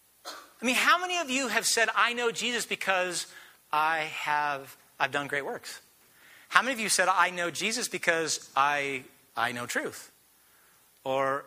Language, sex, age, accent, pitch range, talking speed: English, male, 40-59, American, 150-230 Hz, 170 wpm